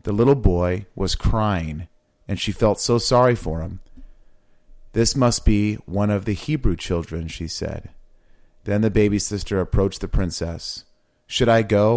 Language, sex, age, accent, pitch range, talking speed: English, male, 30-49, American, 90-110 Hz, 160 wpm